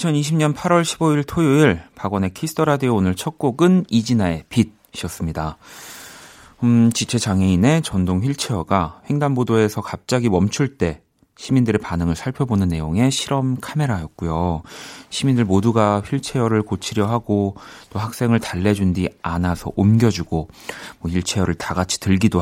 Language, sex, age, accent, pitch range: Korean, male, 40-59, native, 90-125 Hz